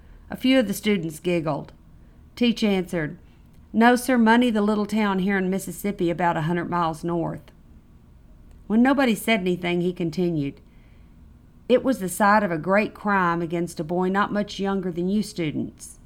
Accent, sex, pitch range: American, female, 140-205 Hz